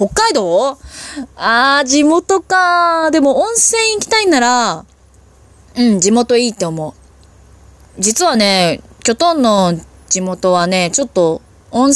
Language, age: Japanese, 20-39